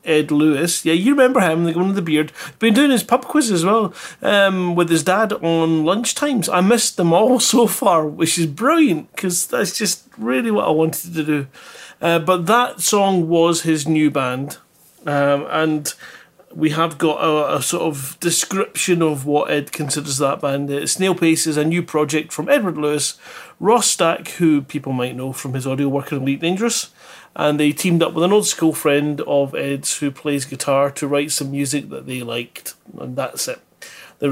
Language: English